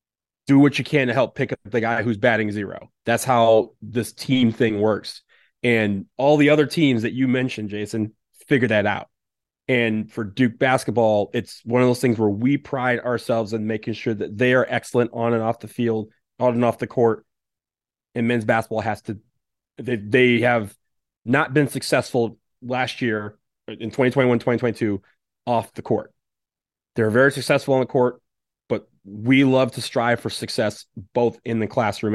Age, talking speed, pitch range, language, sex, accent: 30-49, 180 wpm, 110-130 Hz, English, male, American